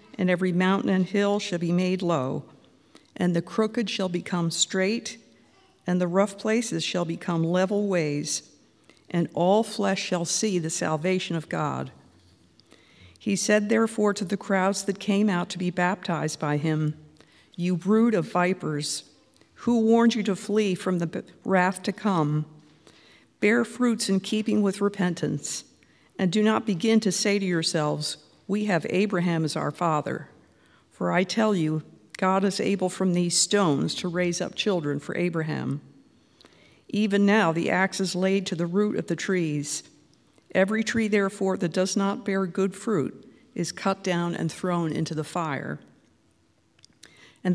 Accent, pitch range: American, 165-205 Hz